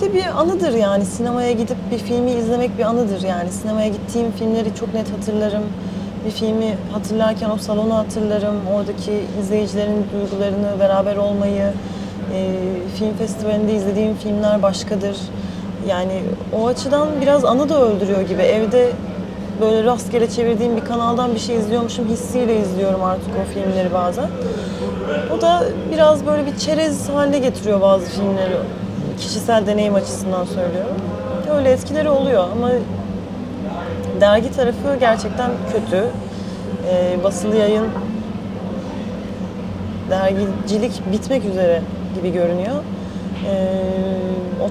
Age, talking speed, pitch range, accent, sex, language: 30-49, 115 wpm, 195-230 Hz, native, female, Turkish